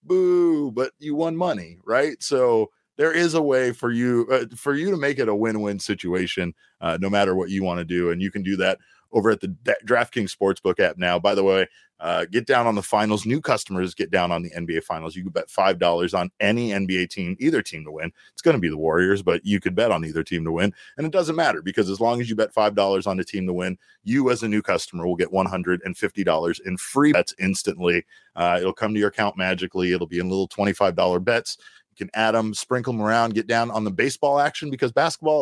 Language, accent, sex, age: English, American, male, 30-49